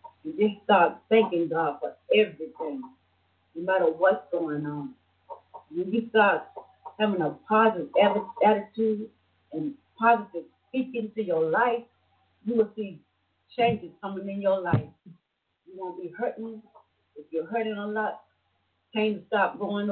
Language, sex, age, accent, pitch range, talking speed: English, female, 40-59, American, 170-230 Hz, 140 wpm